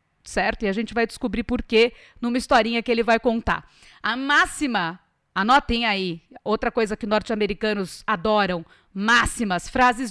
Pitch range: 215-310 Hz